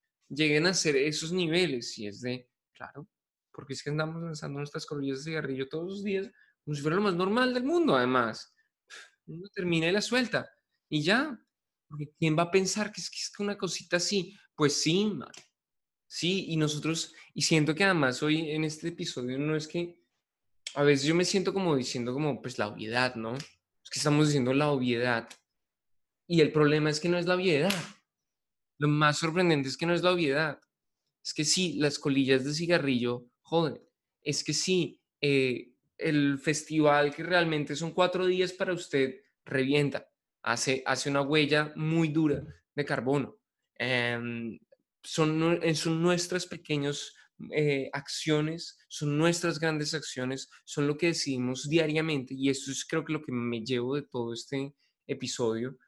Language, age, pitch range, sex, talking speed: Spanish, 20-39, 135-170 Hz, male, 175 wpm